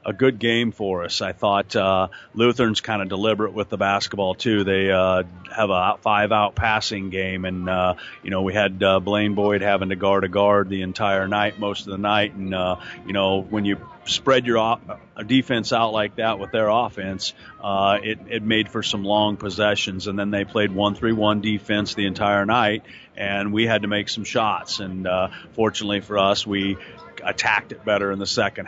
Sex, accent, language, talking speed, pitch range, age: male, American, English, 205 wpm, 95-105 Hz, 40-59